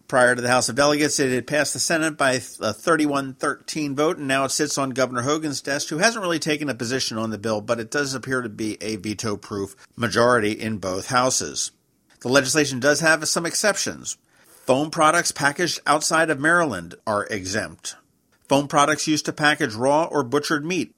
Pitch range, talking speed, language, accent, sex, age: 125-150 Hz, 195 wpm, English, American, male, 50-69